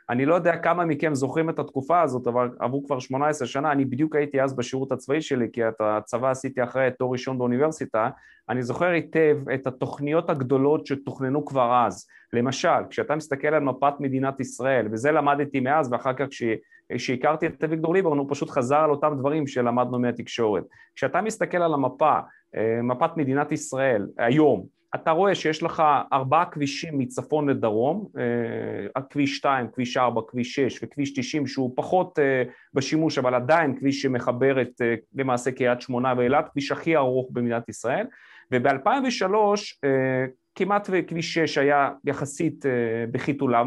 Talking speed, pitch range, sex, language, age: 150 wpm, 130-165 Hz, male, Hebrew, 30-49